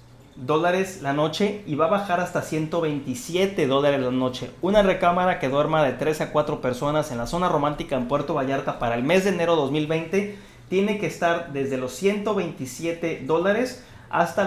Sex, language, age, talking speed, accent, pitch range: male, Spanish, 30-49, 175 wpm, Mexican, 140-180 Hz